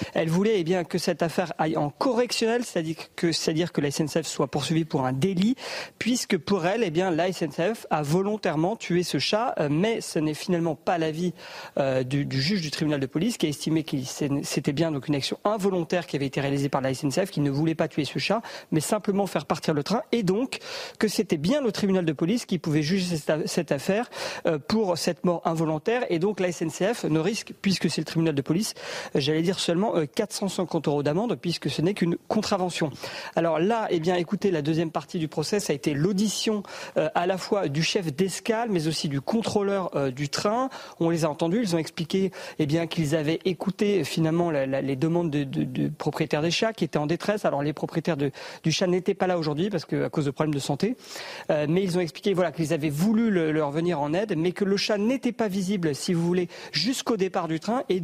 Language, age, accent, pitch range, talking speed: French, 40-59, French, 155-200 Hz, 230 wpm